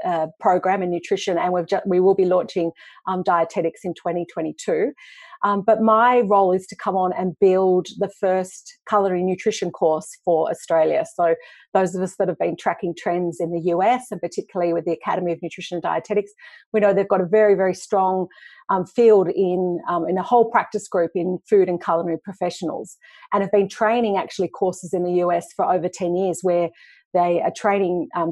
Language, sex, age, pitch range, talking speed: English, female, 40-59, 175-205 Hz, 195 wpm